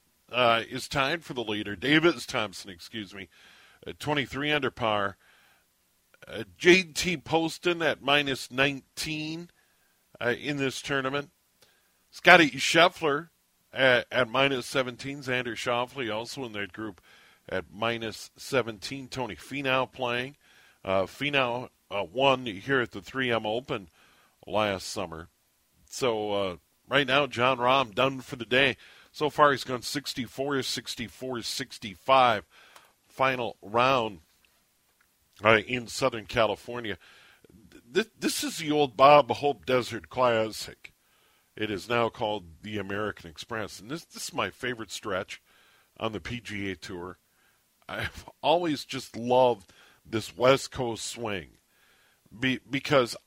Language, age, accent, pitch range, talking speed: English, 50-69, American, 105-135 Hz, 125 wpm